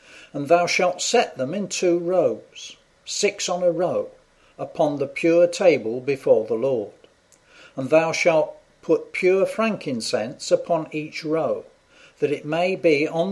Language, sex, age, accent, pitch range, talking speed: English, male, 50-69, British, 150-215 Hz, 150 wpm